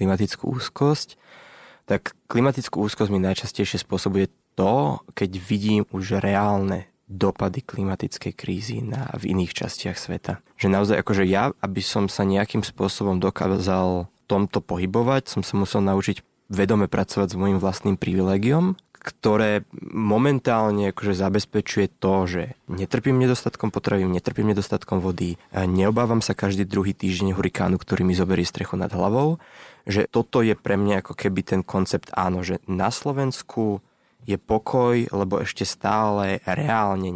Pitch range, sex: 95-110 Hz, male